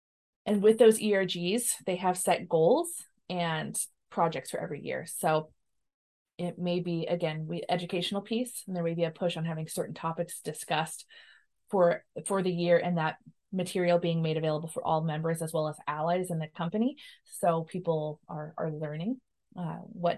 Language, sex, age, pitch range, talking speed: English, female, 20-39, 160-180 Hz, 175 wpm